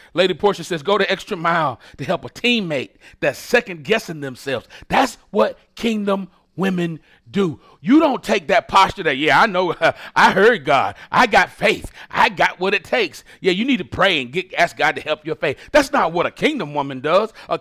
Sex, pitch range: male, 160-230 Hz